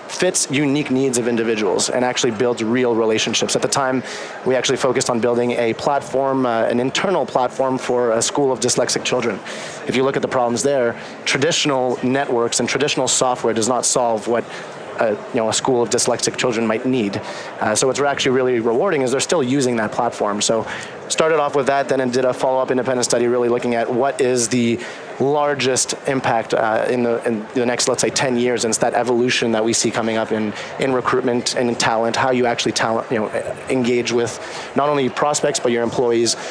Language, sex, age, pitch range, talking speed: English, male, 30-49, 115-130 Hz, 205 wpm